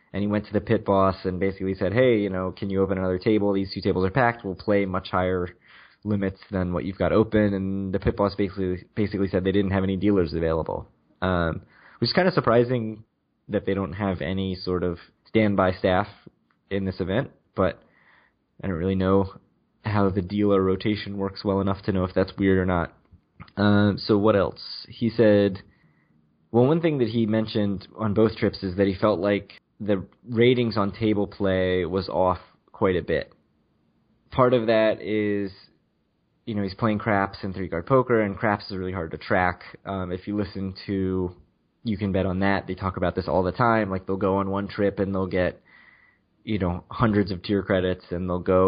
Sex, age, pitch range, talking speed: male, 20-39, 95-105 Hz, 205 wpm